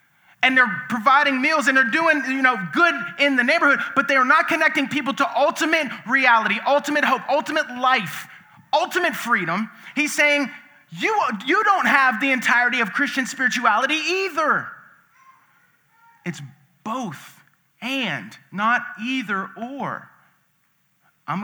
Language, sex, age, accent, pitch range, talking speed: English, male, 30-49, American, 220-295 Hz, 130 wpm